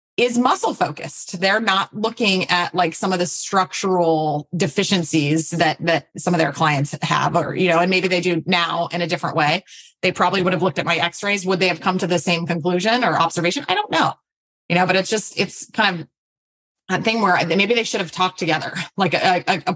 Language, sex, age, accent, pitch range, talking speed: English, female, 20-39, American, 170-205 Hz, 220 wpm